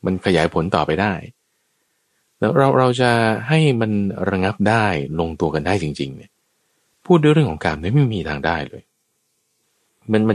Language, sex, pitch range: Thai, male, 85-120 Hz